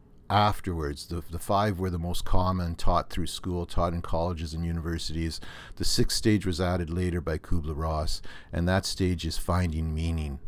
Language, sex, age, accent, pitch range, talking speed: English, male, 50-69, American, 80-95 Hz, 170 wpm